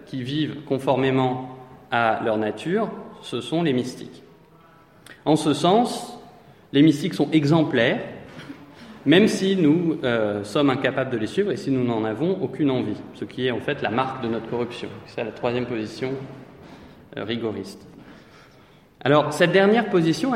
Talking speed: 155 wpm